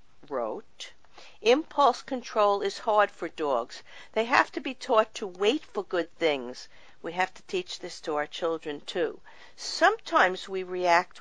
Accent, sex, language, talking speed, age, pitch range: American, female, English, 155 wpm, 50-69, 170-215 Hz